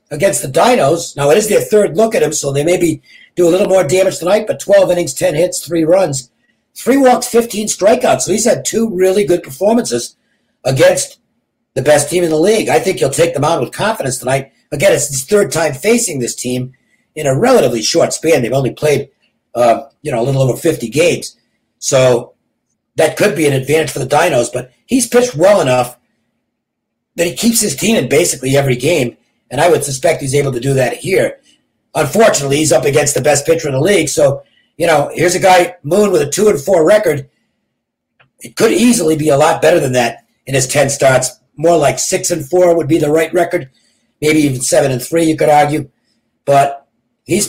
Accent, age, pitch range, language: American, 50-69, 135-185 Hz, English